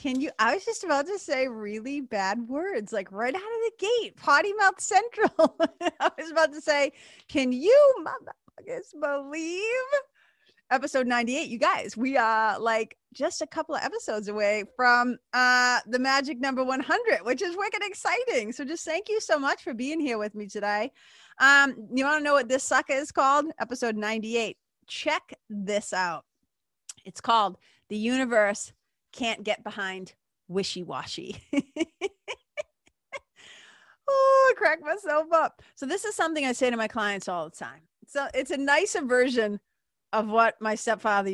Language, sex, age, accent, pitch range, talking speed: English, female, 30-49, American, 210-325 Hz, 170 wpm